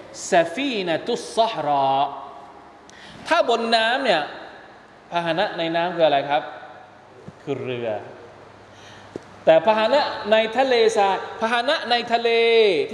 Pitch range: 140-230 Hz